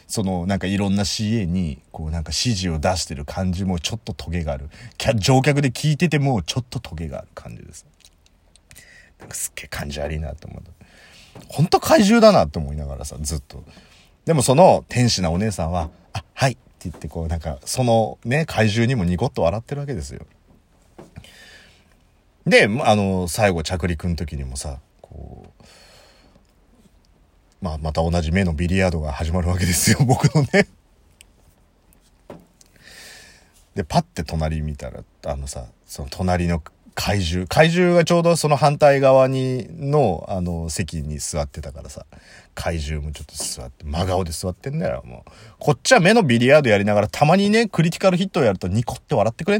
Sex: male